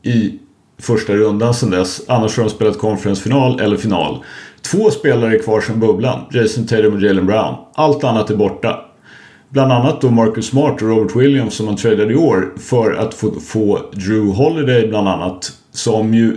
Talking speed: 180 wpm